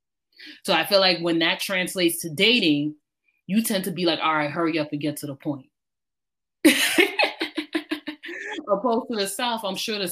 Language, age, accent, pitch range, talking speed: English, 20-39, American, 155-225 Hz, 185 wpm